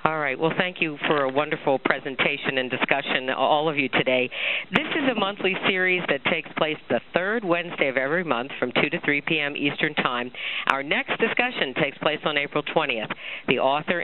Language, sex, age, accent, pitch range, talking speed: English, female, 50-69, American, 135-170 Hz, 195 wpm